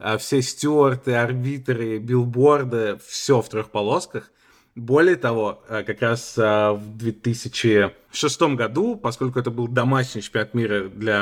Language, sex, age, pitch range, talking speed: Russian, male, 20-39, 110-130 Hz, 120 wpm